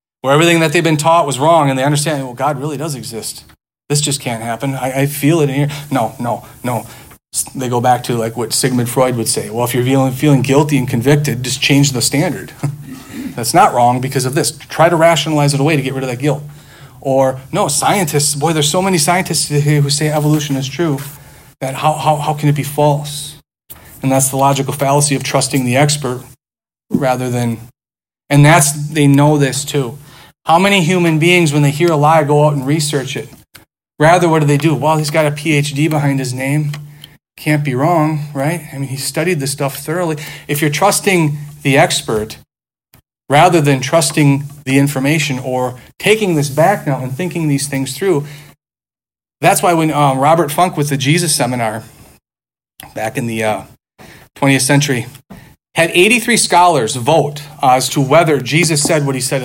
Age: 40-59